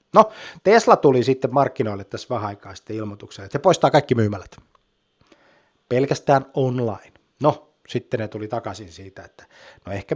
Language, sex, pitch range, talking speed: Finnish, male, 105-130 Hz, 150 wpm